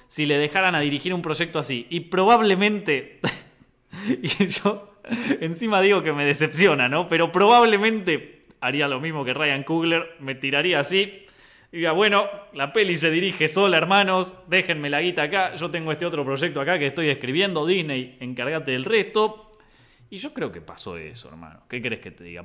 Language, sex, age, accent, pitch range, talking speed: Spanish, male, 20-39, Argentinian, 125-215 Hz, 180 wpm